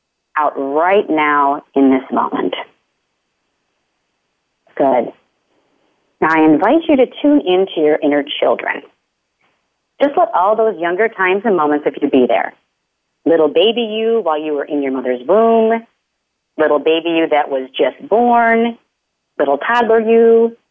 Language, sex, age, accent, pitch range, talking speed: English, female, 40-59, American, 155-230 Hz, 140 wpm